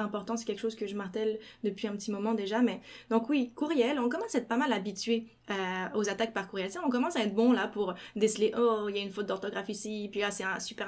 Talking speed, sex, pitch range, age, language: 280 wpm, female, 210-245 Hz, 20-39, French